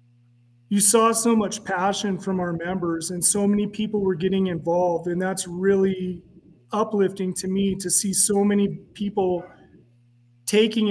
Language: English